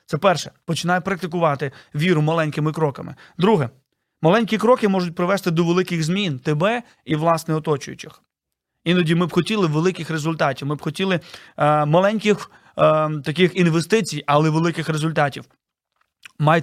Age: 30-49